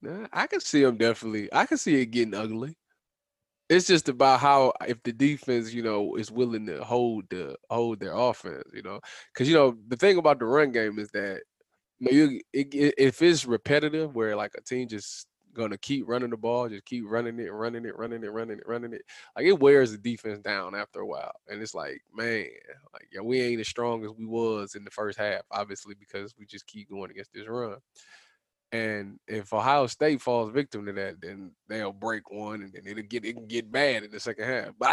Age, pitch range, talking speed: 20-39, 110-155 Hz, 215 wpm